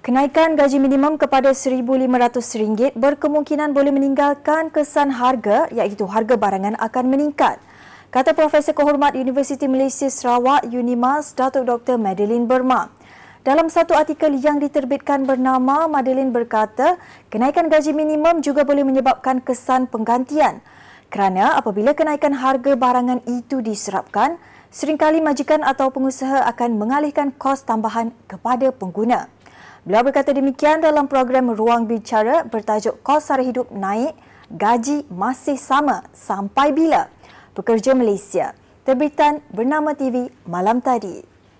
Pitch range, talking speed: 235-290 Hz, 120 wpm